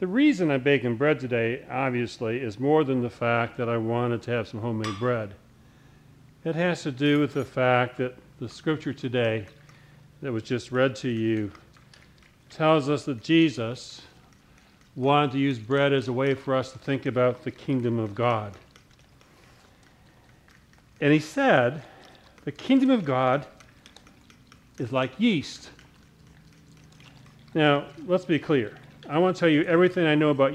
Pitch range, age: 125-150 Hz, 50-69